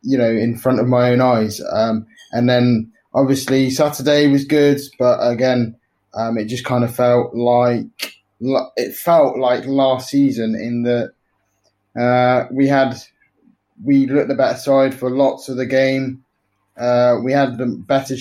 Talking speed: 155 wpm